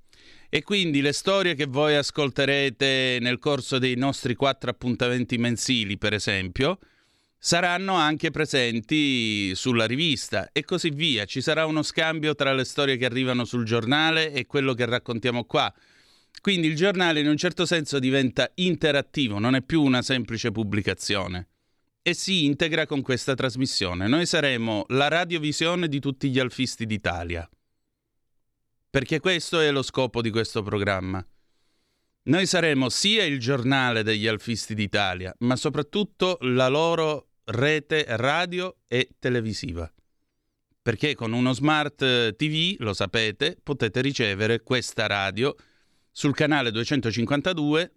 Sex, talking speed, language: male, 135 wpm, Italian